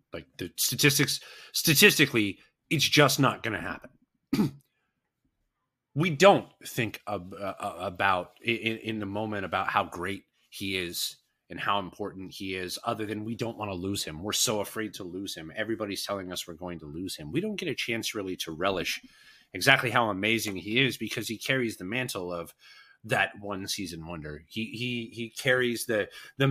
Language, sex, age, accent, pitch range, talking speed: English, male, 30-49, American, 95-130 Hz, 180 wpm